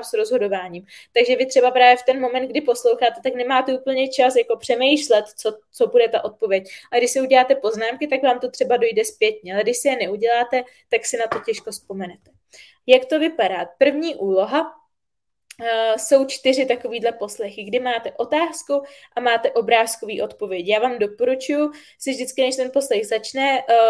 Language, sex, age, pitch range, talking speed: Czech, female, 20-39, 225-270 Hz, 180 wpm